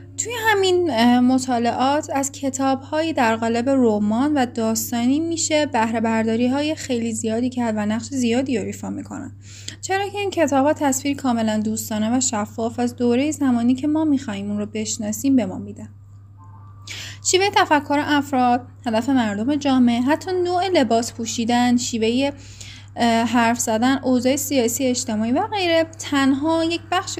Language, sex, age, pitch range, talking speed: Persian, female, 10-29, 220-280 Hz, 135 wpm